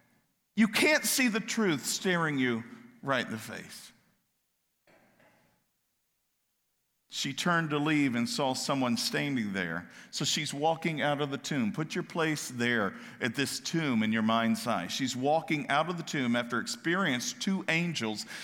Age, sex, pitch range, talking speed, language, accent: 50-69, male, 140-205 Hz, 155 wpm, English, American